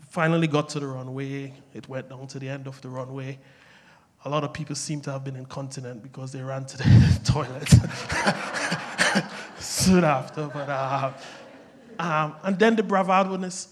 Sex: male